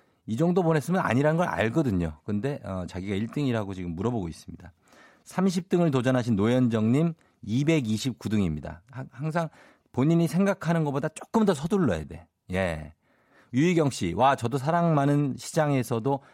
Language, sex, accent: Korean, male, native